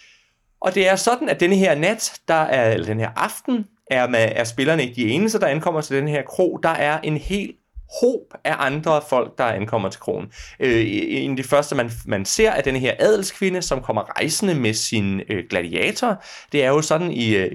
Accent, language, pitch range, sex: native, Danish, 110-165 Hz, male